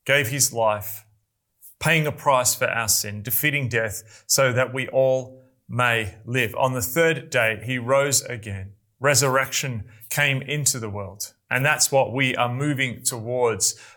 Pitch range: 115-145 Hz